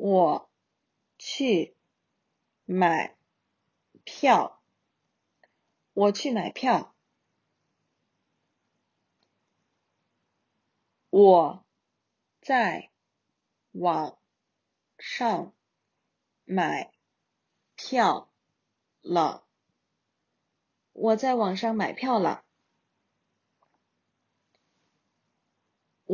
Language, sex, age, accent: Chinese, female, 30-49, native